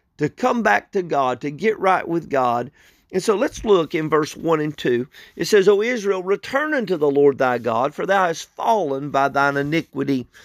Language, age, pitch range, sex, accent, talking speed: English, 50-69, 145-195 Hz, male, American, 205 wpm